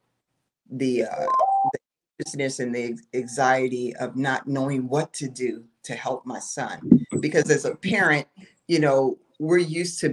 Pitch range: 135-185 Hz